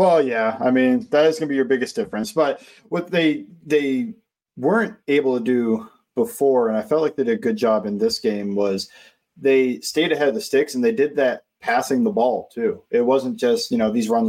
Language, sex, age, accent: English, male, 20-39, American